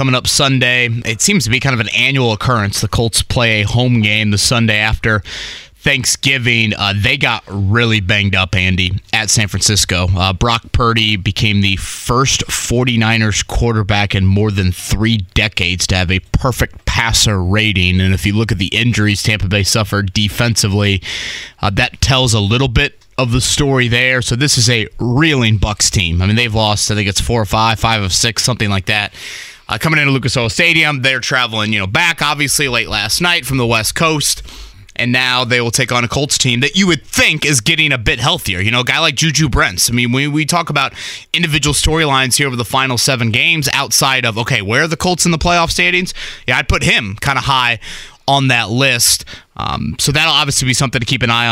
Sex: male